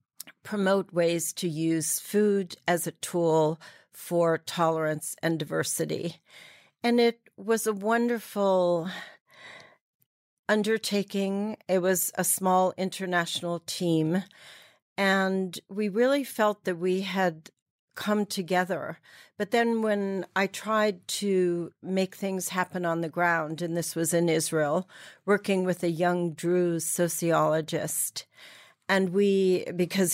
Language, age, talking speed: English, 50-69, 115 wpm